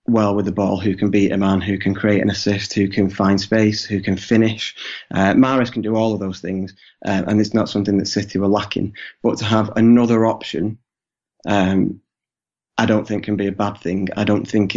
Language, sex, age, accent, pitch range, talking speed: English, male, 20-39, British, 100-110 Hz, 225 wpm